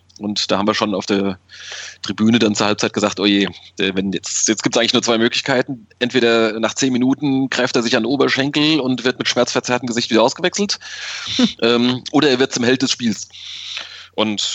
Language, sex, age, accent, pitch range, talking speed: German, male, 20-39, German, 95-120 Hz, 200 wpm